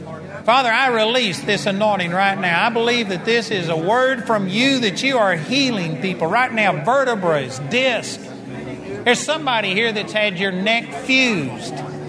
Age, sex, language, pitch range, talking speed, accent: 50-69, male, English, 185-240 Hz, 165 wpm, American